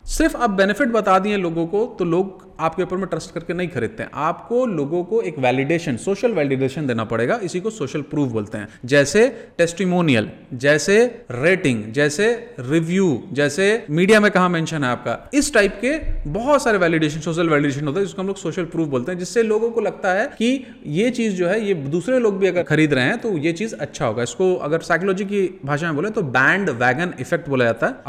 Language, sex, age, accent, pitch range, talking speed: Hindi, male, 30-49, native, 145-210 Hz, 105 wpm